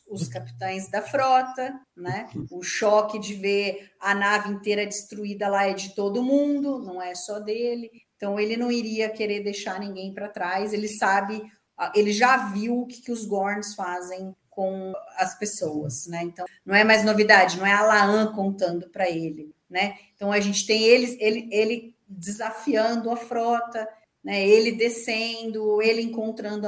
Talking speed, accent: 165 wpm, Brazilian